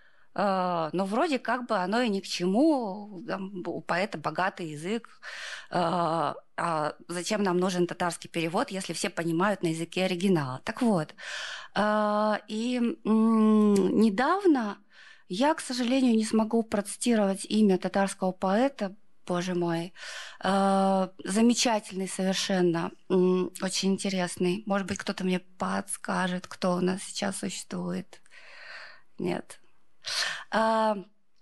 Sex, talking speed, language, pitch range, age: female, 105 wpm, Russian, 185-230 Hz, 20-39